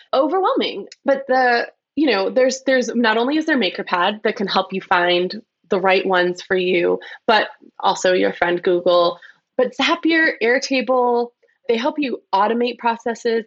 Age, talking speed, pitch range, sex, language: 20-39, 155 wpm, 190-265 Hz, female, English